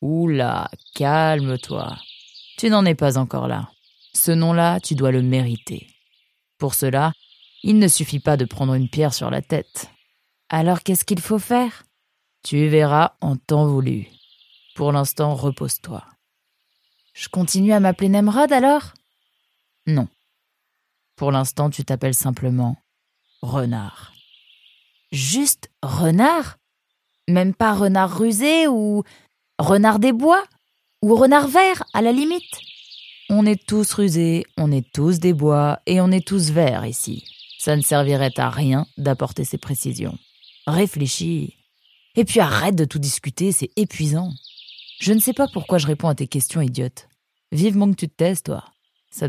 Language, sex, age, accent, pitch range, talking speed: French, female, 20-39, French, 135-195 Hz, 145 wpm